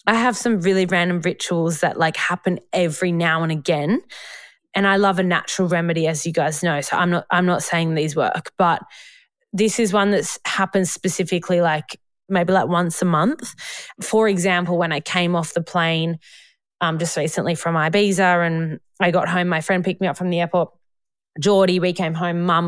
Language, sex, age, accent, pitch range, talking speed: English, female, 20-39, Australian, 170-195 Hz, 195 wpm